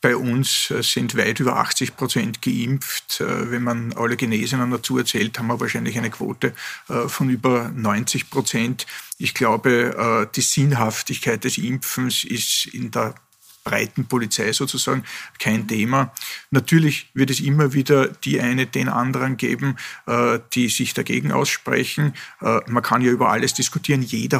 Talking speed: 145 wpm